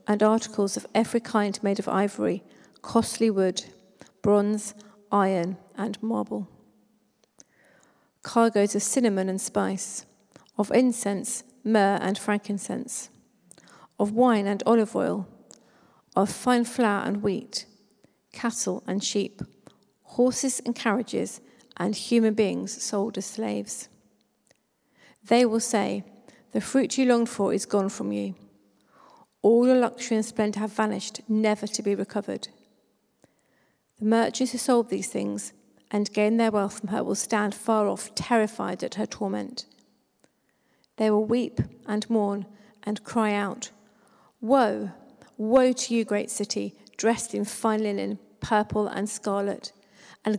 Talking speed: 130 wpm